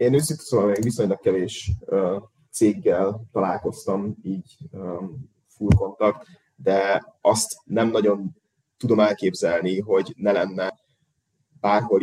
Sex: male